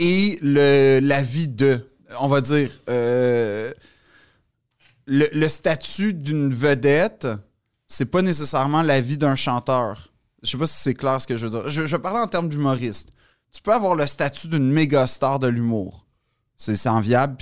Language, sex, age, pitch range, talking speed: French, male, 30-49, 125-150 Hz, 180 wpm